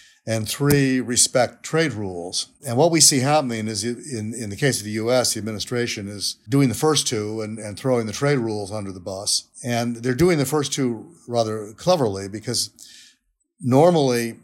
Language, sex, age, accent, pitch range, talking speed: English, male, 50-69, American, 110-135 Hz, 185 wpm